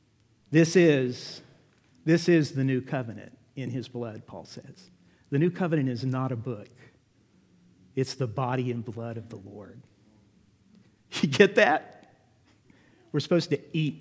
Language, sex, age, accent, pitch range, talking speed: English, male, 50-69, American, 125-180 Hz, 145 wpm